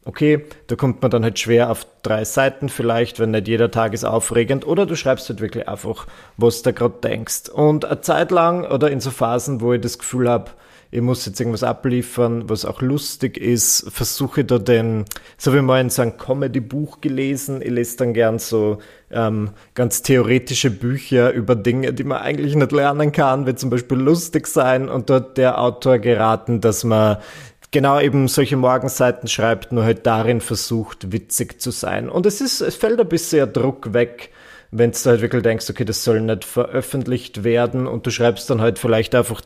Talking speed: 195 wpm